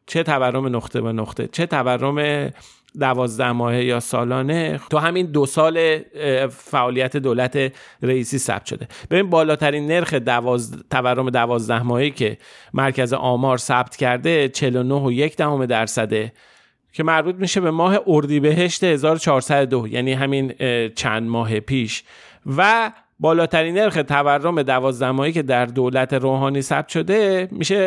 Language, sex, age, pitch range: Persian, male, 40-59, 125-155 Hz